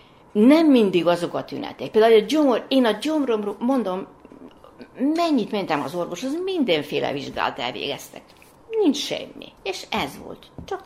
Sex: female